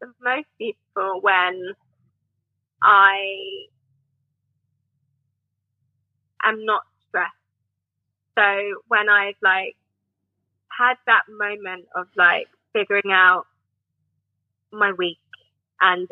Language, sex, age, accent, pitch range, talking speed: English, female, 20-39, British, 180-230 Hz, 80 wpm